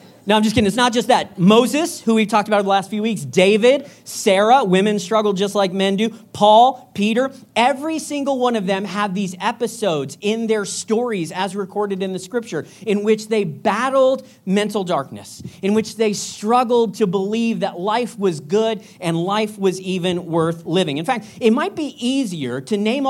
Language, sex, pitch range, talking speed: English, male, 170-225 Hz, 190 wpm